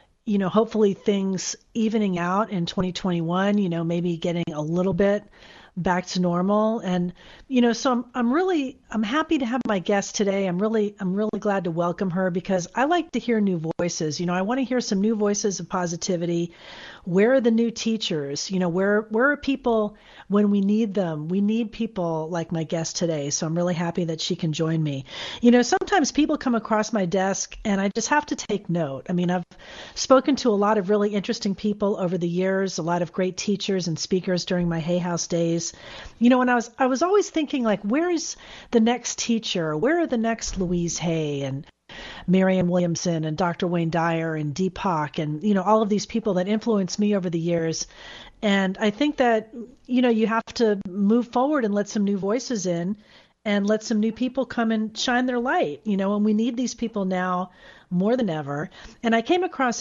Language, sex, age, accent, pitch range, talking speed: English, female, 40-59, American, 175-225 Hz, 215 wpm